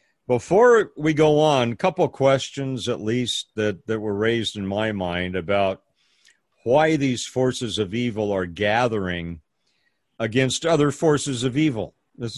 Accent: American